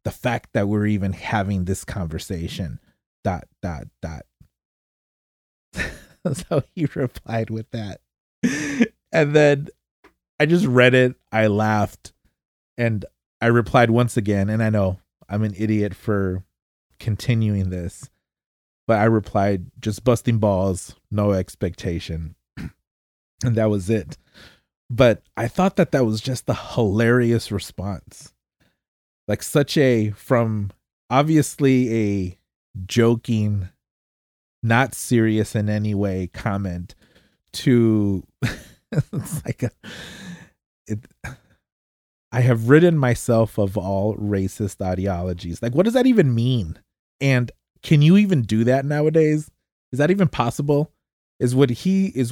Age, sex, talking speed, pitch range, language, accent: 30-49, male, 120 wpm, 100-125 Hz, English, American